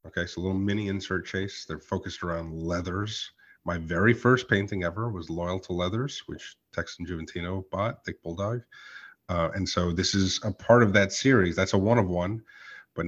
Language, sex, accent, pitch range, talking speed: English, male, American, 85-105 Hz, 190 wpm